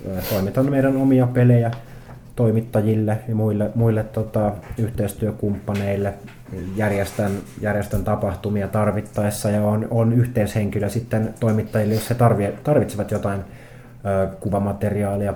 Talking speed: 100 wpm